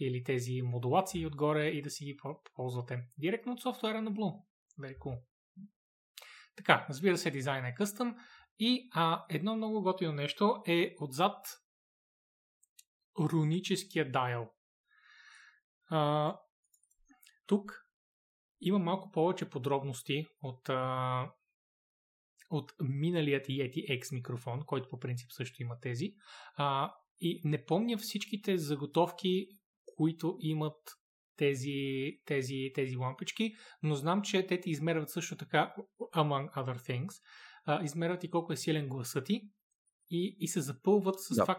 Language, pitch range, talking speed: Bulgarian, 140-190 Hz, 125 wpm